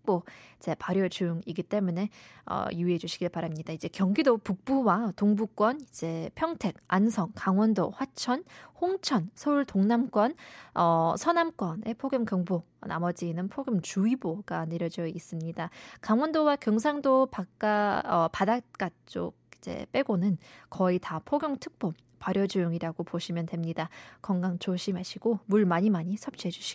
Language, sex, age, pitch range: Korean, female, 20-39, 180-260 Hz